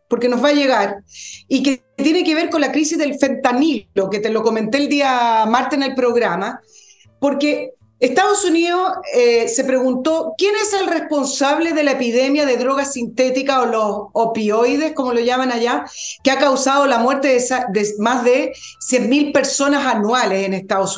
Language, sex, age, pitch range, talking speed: Spanish, female, 40-59, 230-310 Hz, 175 wpm